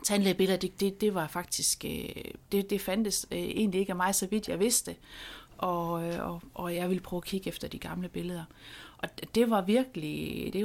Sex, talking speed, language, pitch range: female, 190 wpm, Danish, 170-225 Hz